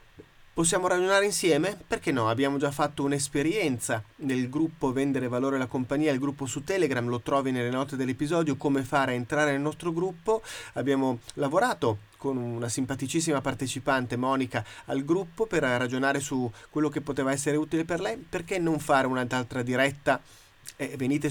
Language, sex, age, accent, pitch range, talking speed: Italian, male, 30-49, native, 130-160 Hz, 160 wpm